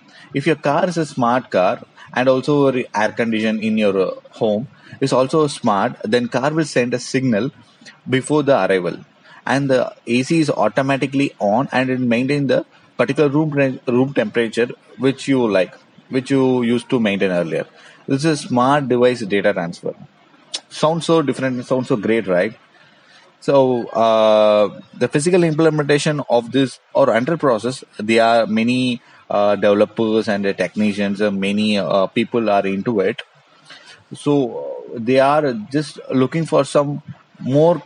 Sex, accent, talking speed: male, Indian, 150 wpm